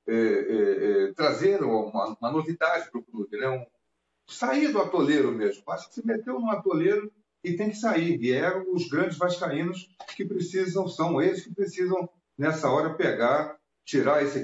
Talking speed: 165 wpm